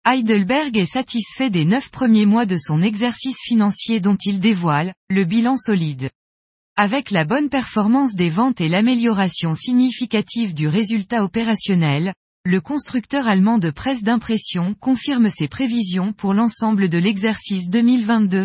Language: French